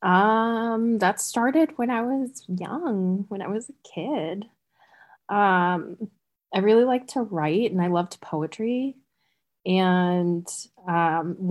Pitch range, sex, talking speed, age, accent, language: 160-185 Hz, female, 125 wpm, 20-39, American, English